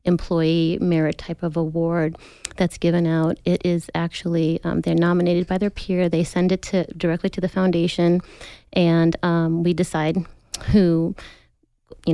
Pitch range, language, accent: 165-180 Hz, English, American